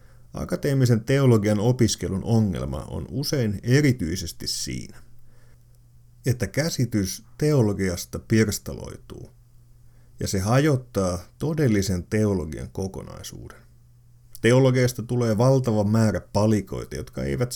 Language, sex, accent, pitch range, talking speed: Finnish, male, native, 100-125 Hz, 85 wpm